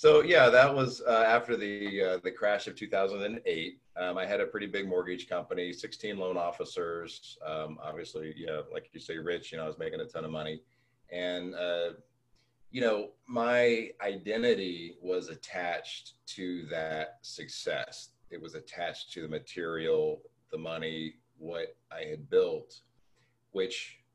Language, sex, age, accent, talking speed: English, male, 40-59, American, 165 wpm